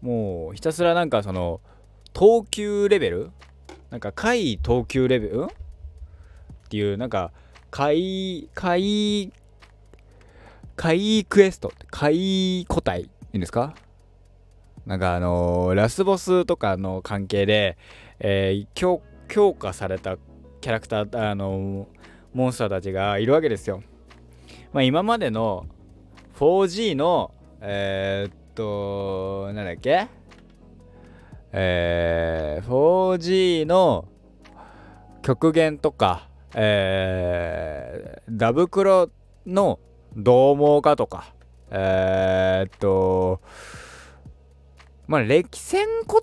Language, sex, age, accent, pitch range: Japanese, male, 20-39, native, 90-150 Hz